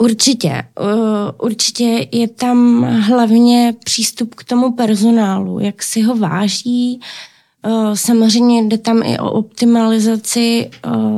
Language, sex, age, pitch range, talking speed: Czech, female, 20-39, 205-225 Hz, 100 wpm